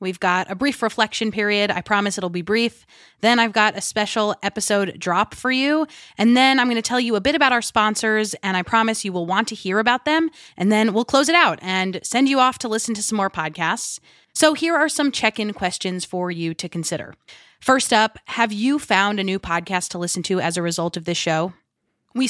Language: English